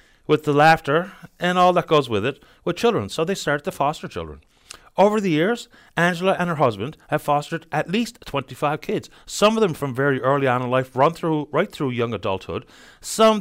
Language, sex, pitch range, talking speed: English, male, 130-185 Hz, 205 wpm